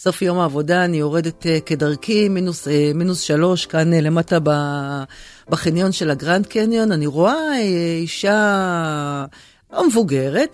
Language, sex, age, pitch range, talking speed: Hebrew, female, 40-59, 150-210 Hz, 135 wpm